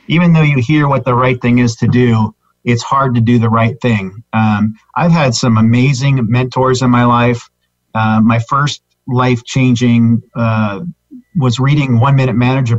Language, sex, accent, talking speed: English, male, American, 175 wpm